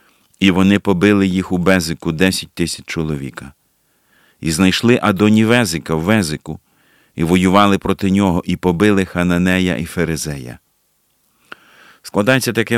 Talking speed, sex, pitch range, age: 115 wpm, male, 90-115 Hz, 50-69